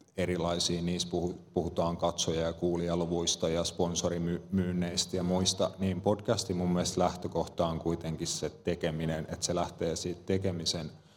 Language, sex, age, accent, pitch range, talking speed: Finnish, male, 30-49, native, 85-90 Hz, 130 wpm